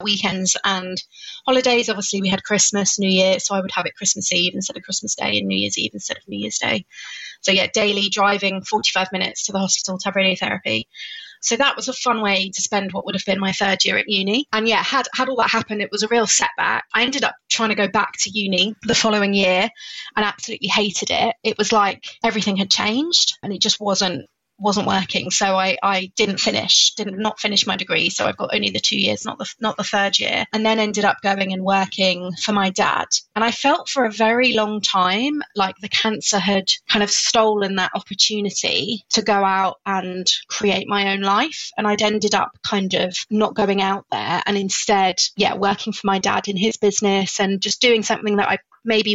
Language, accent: English, British